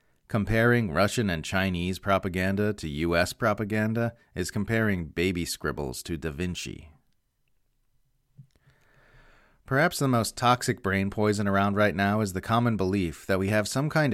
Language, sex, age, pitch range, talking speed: English, male, 40-59, 90-115 Hz, 140 wpm